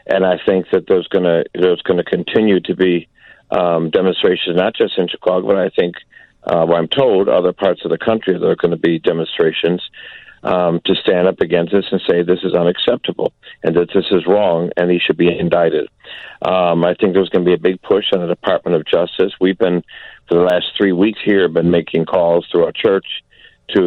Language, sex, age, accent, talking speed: English, male, 50-69, American, 215 wpm